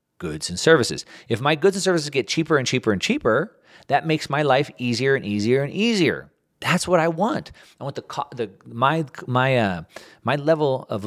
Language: English